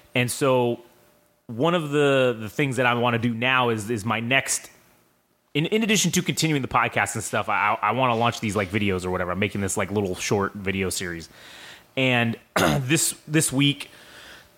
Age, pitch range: 30-49, 110-140 Hz